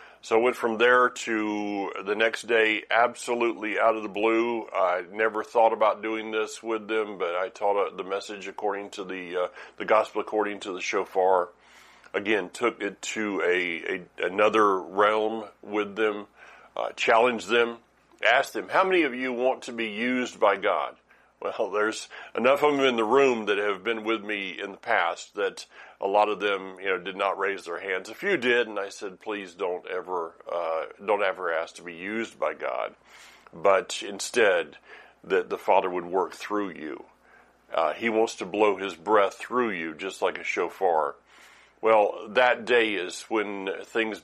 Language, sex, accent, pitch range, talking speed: English, male, American, 100-115 Hz, 185 wpm